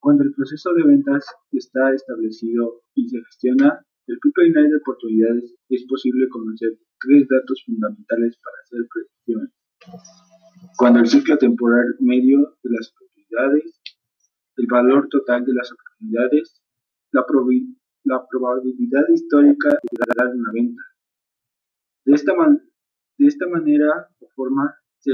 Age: 20-39